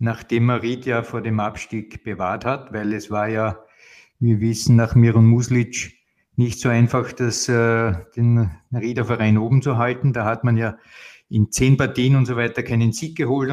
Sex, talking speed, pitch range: male, 175 wpm, 110-130 Hz